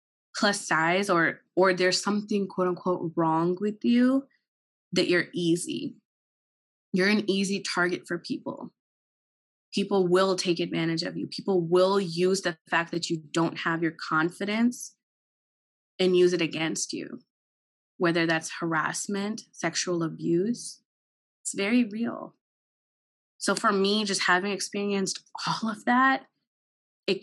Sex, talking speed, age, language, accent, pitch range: female, 130 wpm, 20-39, Telugu, American, 175-215 Hz